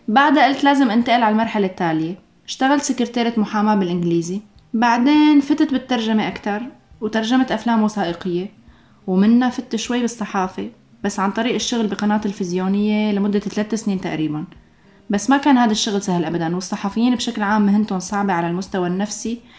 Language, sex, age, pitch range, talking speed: Arabic, female, 20-39, 195-240 Hz, 145 wpm